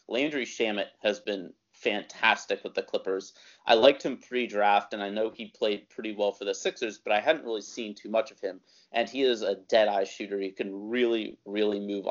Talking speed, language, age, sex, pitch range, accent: 210 wpm, English, 30-49, male, 100-120 Hz, American